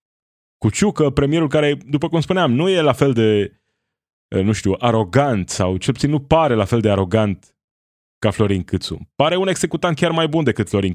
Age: 20-39